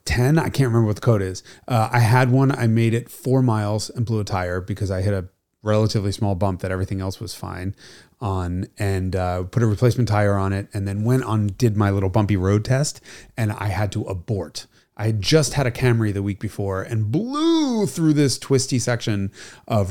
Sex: male